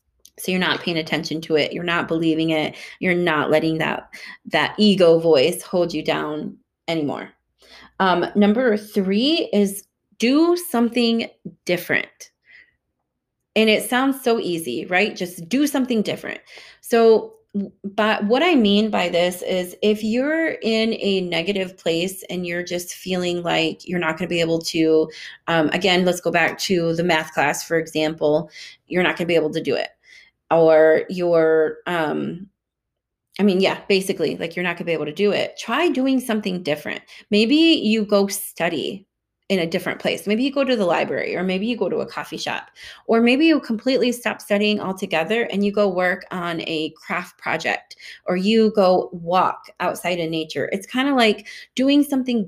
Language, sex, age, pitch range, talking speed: English, female, 20-39, 170-220 Hz, 175 wpm